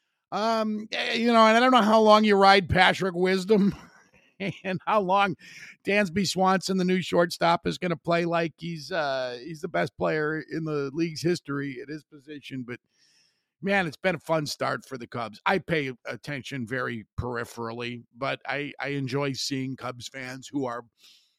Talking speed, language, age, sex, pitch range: 175 wpm, English, 50-69, male, 125-175 Hz